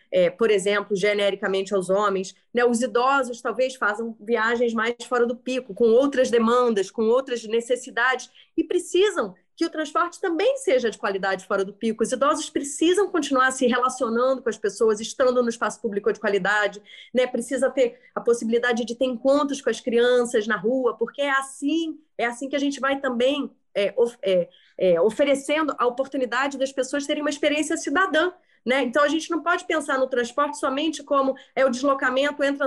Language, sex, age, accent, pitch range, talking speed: Portuguese, female, 30-49, Brazilian, 225-275 Hz, 175 wpm